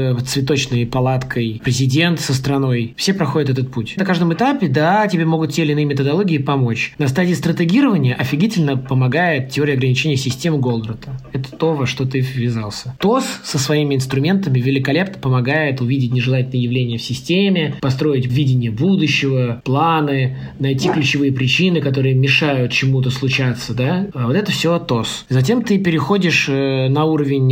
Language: Russian